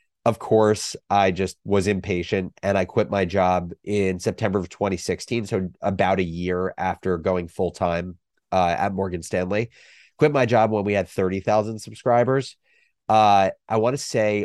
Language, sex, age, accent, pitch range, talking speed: English, male, 30-49, American, 95-110 Hz, 160 wpm